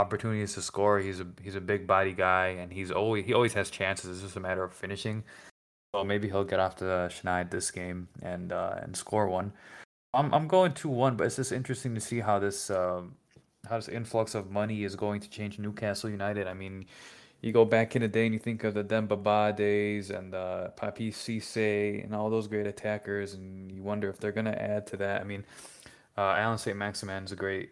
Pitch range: 95-110 Hz